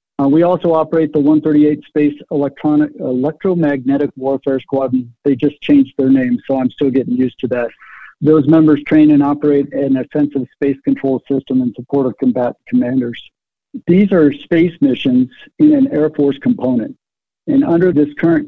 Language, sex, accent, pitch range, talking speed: English, male, American, 140-165 Hz, 160 wpm